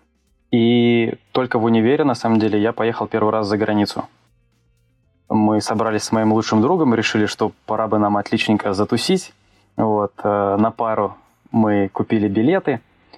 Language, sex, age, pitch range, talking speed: Russian, male, 20-39, 105-115 Hz, 145 wpm